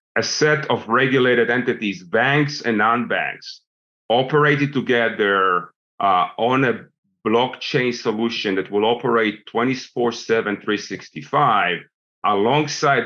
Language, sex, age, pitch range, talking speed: English, male, 40-59, 105-135 Hz, 100 wpm